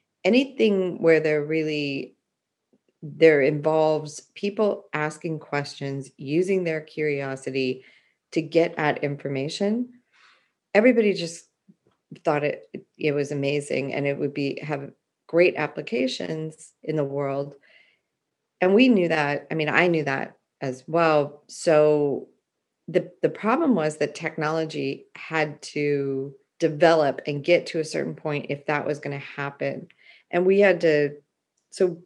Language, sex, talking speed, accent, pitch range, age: English, female, 135 wpm, American, 145-170 Hz, 30-49